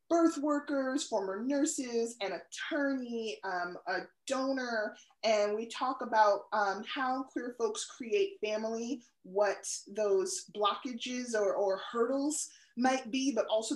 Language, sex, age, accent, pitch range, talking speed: English, female, 20-39, American, 195-270 Hz, 125 wpm